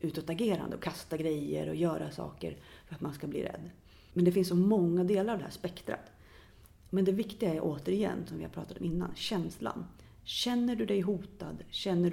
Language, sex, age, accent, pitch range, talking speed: Swedish, female, 30-49, native, 145-195 Hz, 195 wpm